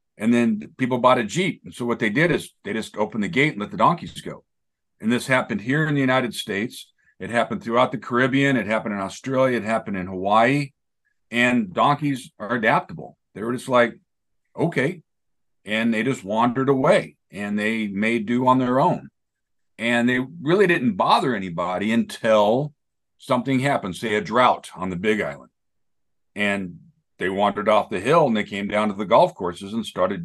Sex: male